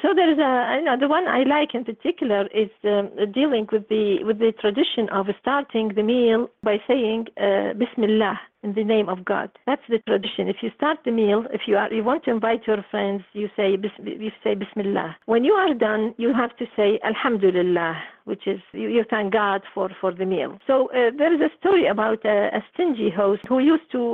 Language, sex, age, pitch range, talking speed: English, female, 50-69, 205-300 Hz, 220 wpm